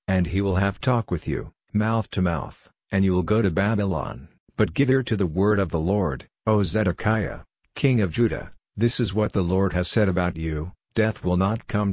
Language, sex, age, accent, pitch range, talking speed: English, male, 50-69, American, 90-105 Hz, 215 wpm